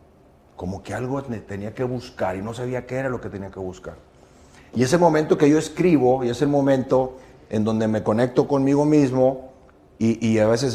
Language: English